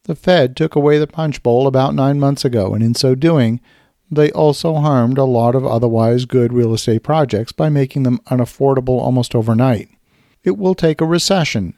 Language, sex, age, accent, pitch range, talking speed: English, male, 50-69, American, 120-150 Hz, 190 wpm